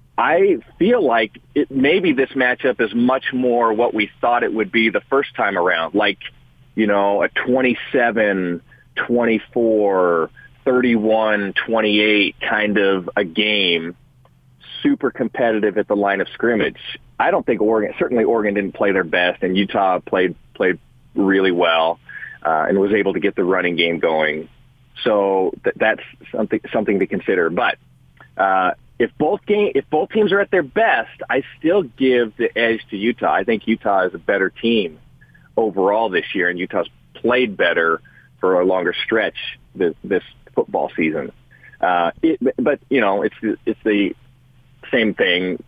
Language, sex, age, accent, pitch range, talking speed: English, male, 30-49, American, 100-130 Hz, 160 wpm